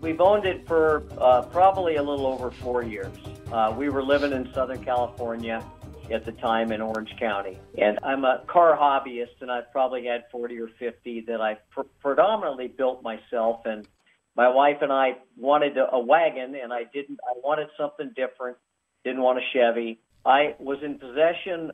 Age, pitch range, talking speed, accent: 50-69, 115-140 Hz, 180 wpm, American